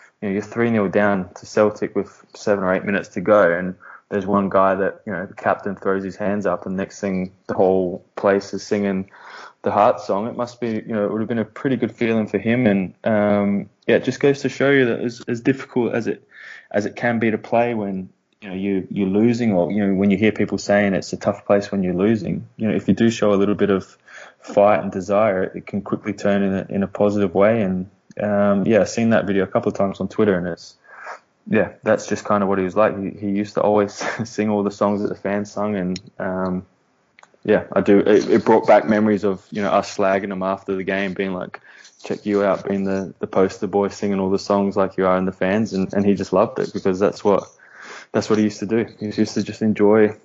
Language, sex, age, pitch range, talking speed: English, male, 20-39, 95-105 Hz, 255 wpm